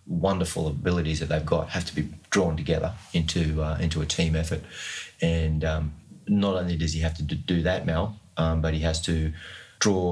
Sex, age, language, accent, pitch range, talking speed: male, 30-49, English, Australian, 80-90 Hz, 195 wpm